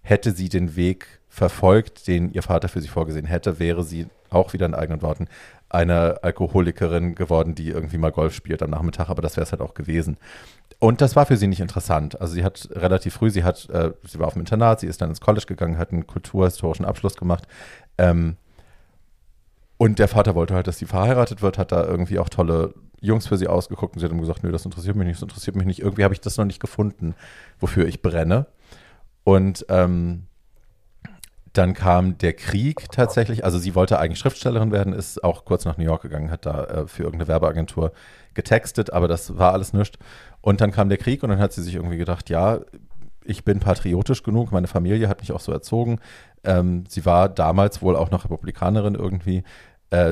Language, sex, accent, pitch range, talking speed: German, male, German, 85-100 Hz, 210 wpm